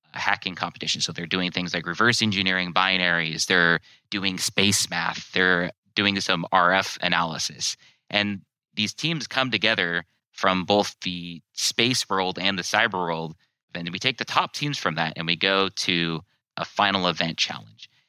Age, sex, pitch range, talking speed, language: 30-49, male, 85-105 Hz, 165 wpm, English